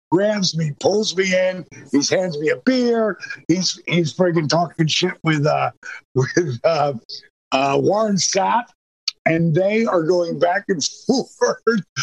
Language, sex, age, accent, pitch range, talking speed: English, male, 50-69, American, 140-195 Hz, 145 wpm